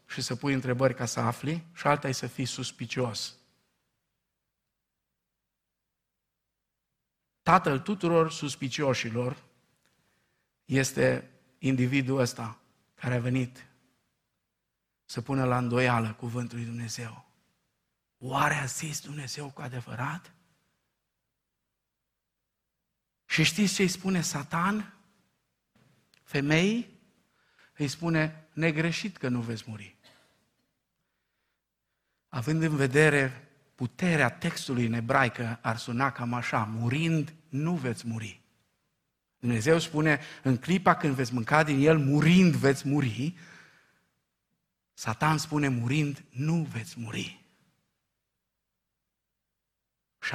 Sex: male